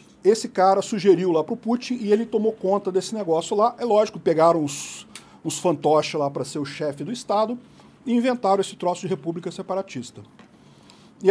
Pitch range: 155-225 Hz